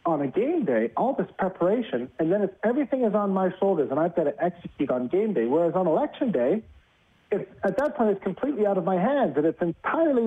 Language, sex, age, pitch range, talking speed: English, male, 40-59, 160-205 Hz, 220 wpm